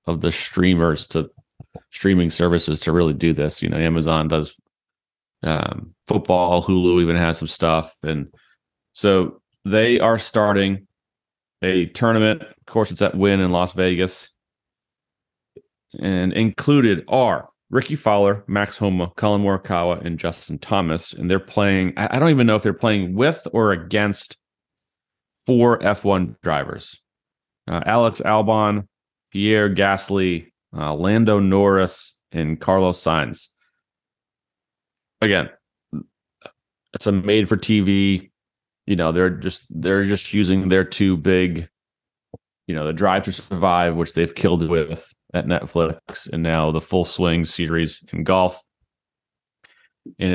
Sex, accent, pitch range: male, American, 85-105 Hz